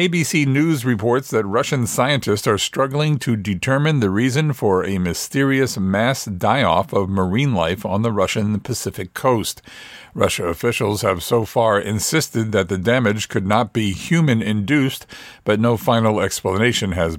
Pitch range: 95-120 Hz